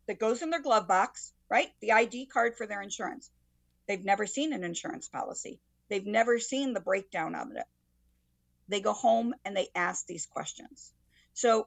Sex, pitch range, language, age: female, 190-255 Hz, English, 50-69